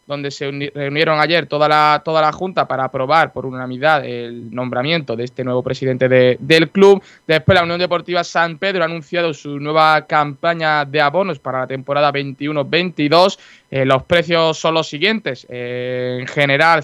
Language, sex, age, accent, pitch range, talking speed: Spanish, male, 20-39, Spanish, 145-185 Hz, 160 wpm